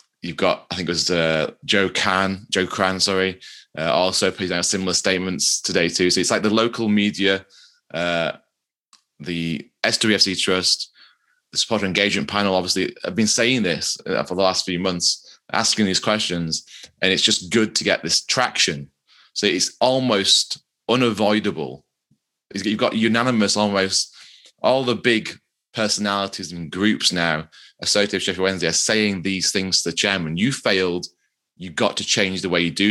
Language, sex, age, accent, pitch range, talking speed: English, male, 20-39, British, 85-100 Hz, 165 wpm